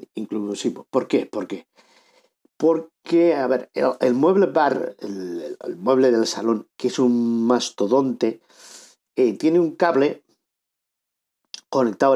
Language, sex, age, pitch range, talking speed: Spanish, male, 50-69, 120-150 Hz, 130 wpm